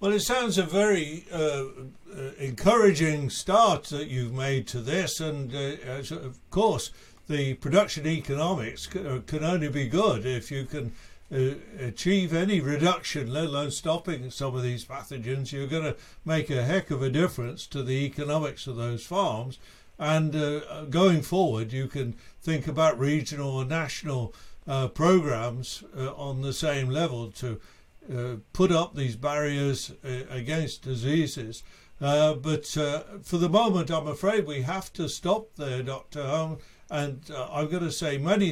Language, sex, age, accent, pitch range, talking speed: English, male, 60-79, British, 135-165 Hz, 160 wpm